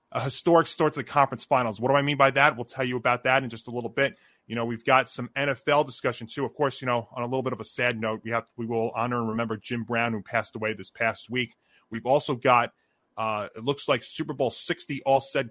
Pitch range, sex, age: 120-150 Hz, male, 30-49